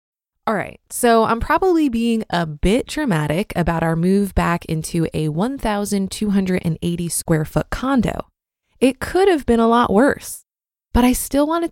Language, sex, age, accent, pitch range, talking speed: English, female, 20-39, American, 175-245 Hz, 150 wpm